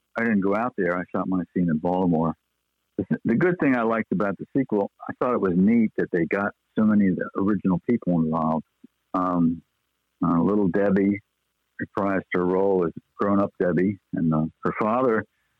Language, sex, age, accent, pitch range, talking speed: English, male, 60-79, American, 90-105 Hz, 190 wpm